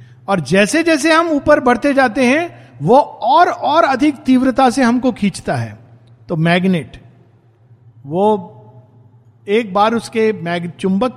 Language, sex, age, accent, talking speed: Hindi, male, 50-69, native, 135 wpm